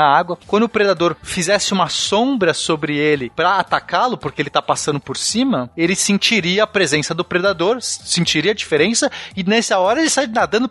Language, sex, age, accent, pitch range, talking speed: Portuguese, male, 30-49, Brazilian, 165-220 Hz, 180 wpm